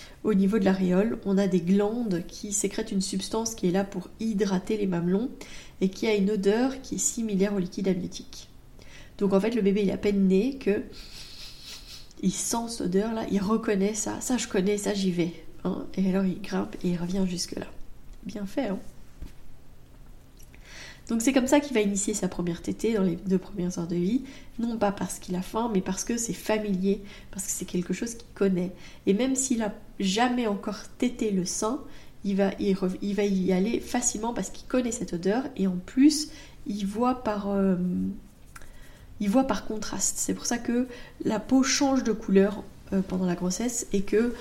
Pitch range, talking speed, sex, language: 190-230 Hz, 200 wpm, female, French